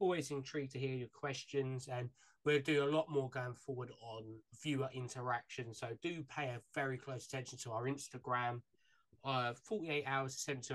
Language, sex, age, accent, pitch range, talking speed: English, male, 20-39, British, 125-140 Hz, 175 wpm